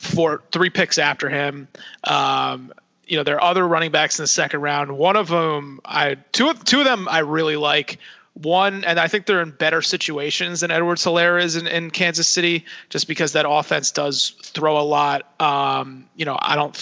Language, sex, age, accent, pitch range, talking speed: English, male, 30-49, American, 145-170 Hz, 205 wpm